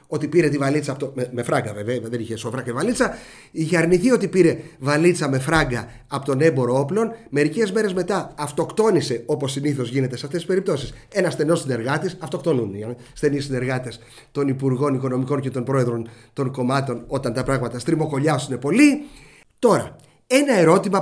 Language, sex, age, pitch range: English, male, 30-49, 140-190 Hz